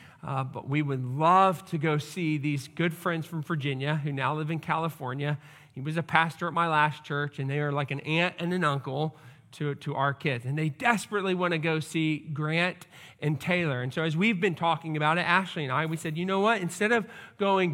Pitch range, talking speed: 150-185 Hz, 230 wpm